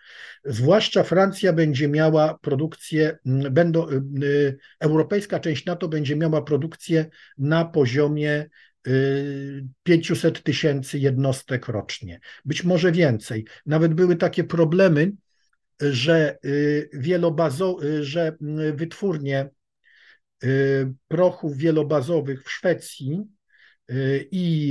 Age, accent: 50-69, native